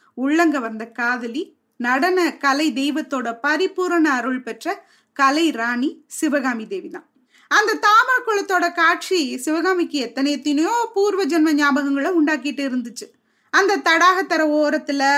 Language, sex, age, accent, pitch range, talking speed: Tamil, female, 20-39, native, 265-340 Hz, 105 wpm